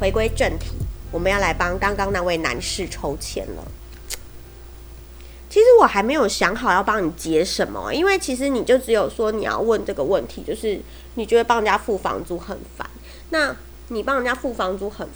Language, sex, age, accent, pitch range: Chinese, female, 30-49, American, 190-270 Hz